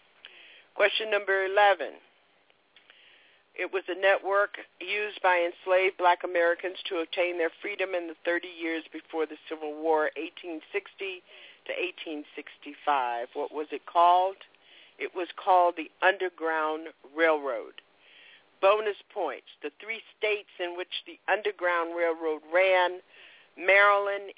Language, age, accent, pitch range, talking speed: English, 60-79, American, 155-205 Hz, 120 wpm